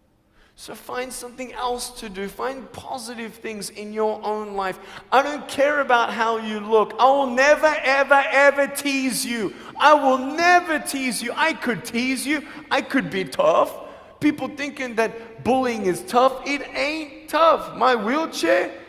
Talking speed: 160 wpm